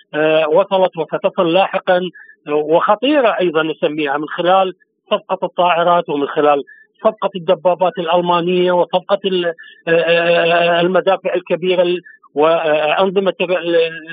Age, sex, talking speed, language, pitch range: 50-69, male, 80 wpm, Arabic, 170-195 Hz